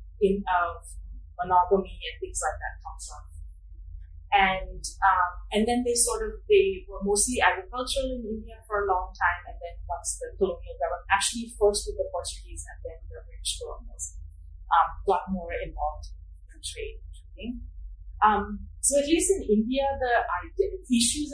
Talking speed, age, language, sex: 170 wpm, 30-49, English, female